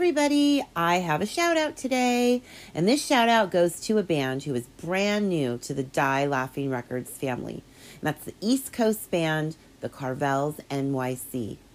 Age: 40-59